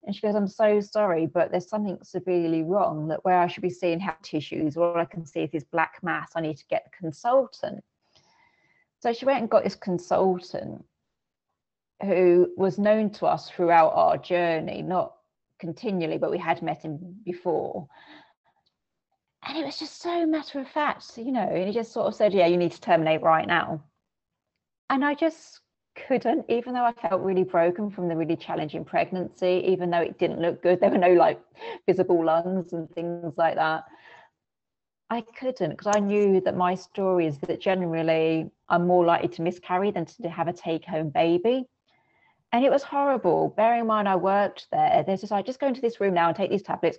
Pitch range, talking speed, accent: 170-210 Hz, 195 wpm, British